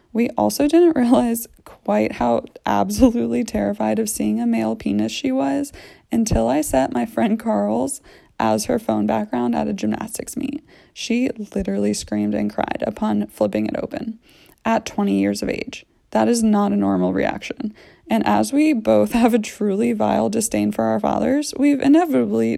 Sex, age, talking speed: female, 20-39, 165 wpm